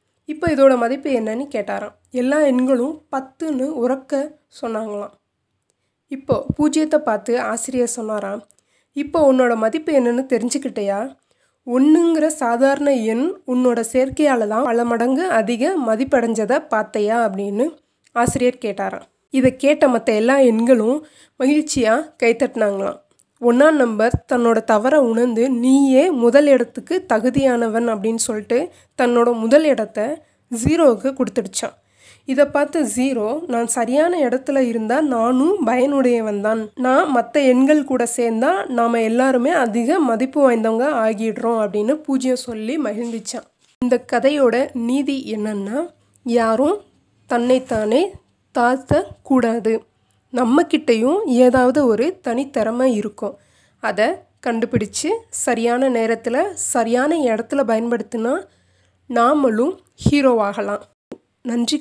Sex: female